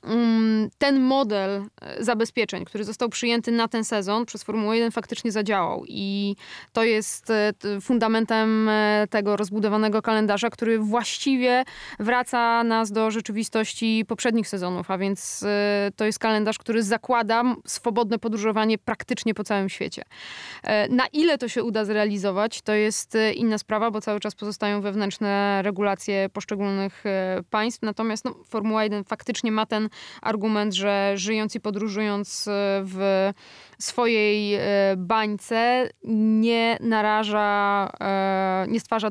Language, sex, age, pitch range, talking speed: Polish, female, 20-39, 205-230 Hz, 120 wpm